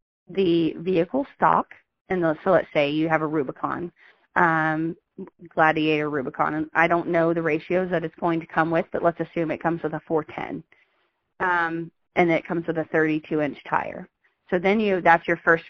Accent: American